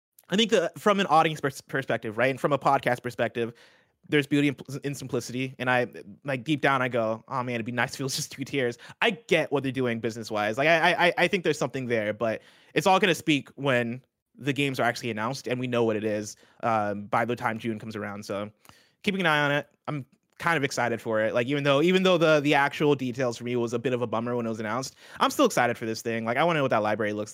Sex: male